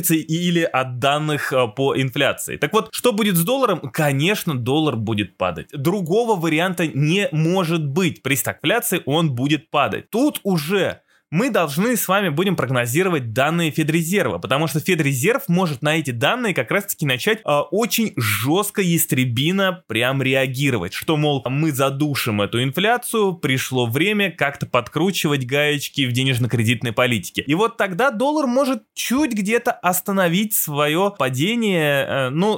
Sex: male